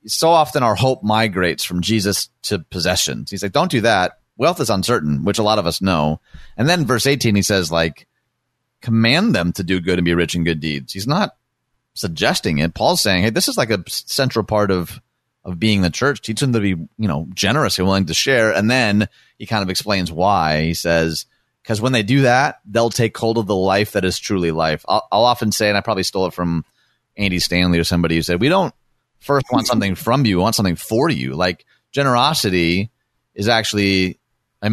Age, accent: 30-49, American